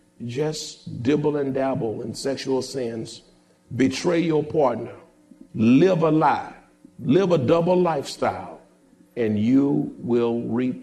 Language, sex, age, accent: English, male, 50-69, American